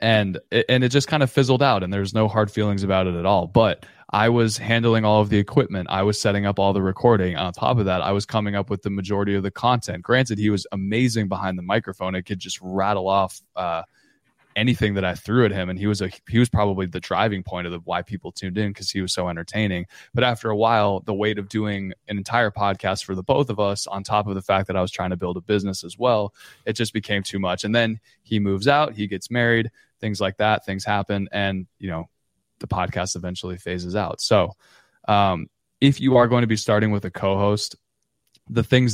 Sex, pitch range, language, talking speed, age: male, 95-110 Hz, English, 235 wpm, 20-39